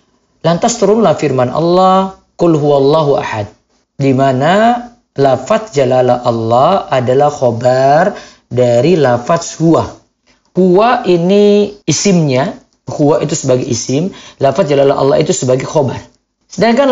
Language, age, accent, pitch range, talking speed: Indonesian, 40-59, native, 135-205 Hz, 115 wpm